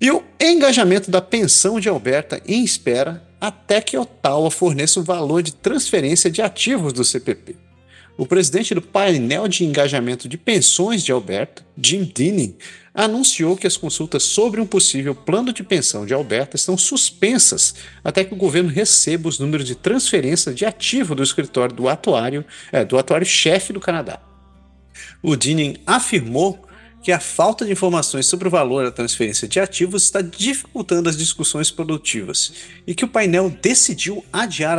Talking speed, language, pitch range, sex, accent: 155 wpm, Portuguese, 135-195 Hz, male, Brazilian